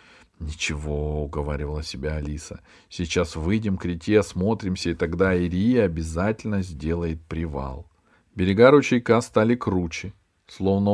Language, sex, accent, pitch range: Russian, male, native, 80-105 Hz